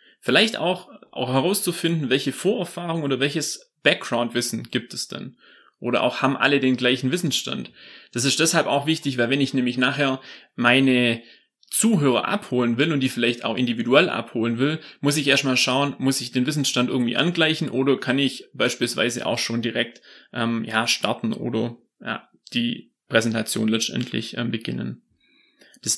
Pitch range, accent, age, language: 125-155 Hz, German, 30-49, German